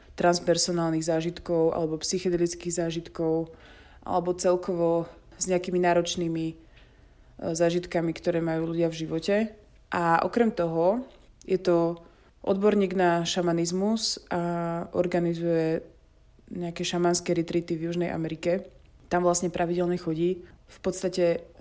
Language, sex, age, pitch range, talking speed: Slovak, female, 20-39, 170-180 Hz, 105 wpm